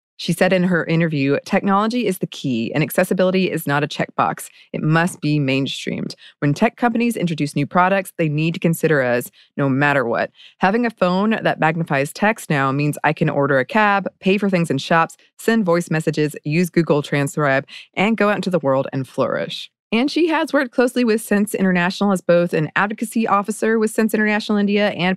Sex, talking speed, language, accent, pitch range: female, 200 wpm, English, American, 145-195 Hz